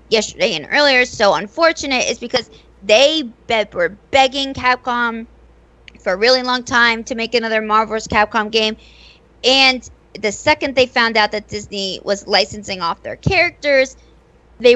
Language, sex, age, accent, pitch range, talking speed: English, female, 20-39, American, 200-255 Hz, 145 wpm